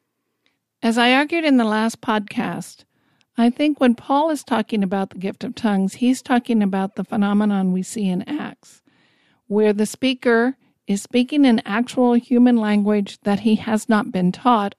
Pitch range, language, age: 205-245 Hz, English, 50-69